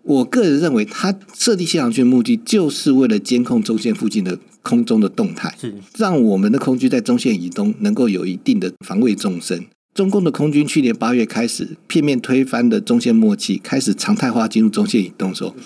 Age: 50-69